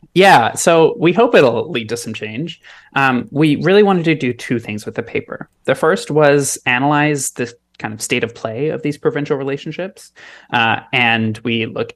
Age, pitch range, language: 20-39, 115-145 Hz, English